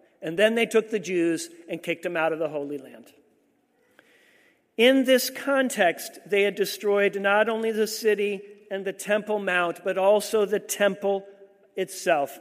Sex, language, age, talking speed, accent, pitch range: male, English, 50-69, 160 wpm, American, 180-225 Hz